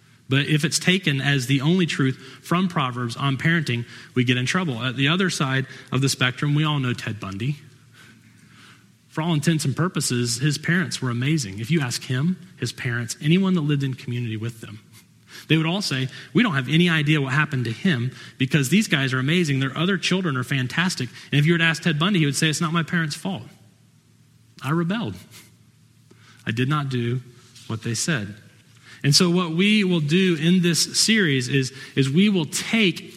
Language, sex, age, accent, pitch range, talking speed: English, male, 30-49, American, 120-160 Hz, 205 wpm